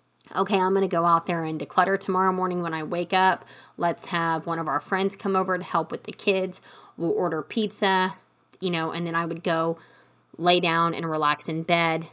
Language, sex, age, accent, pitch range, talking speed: English, female, 30-49, American, 160-195 Hz, 220 wpm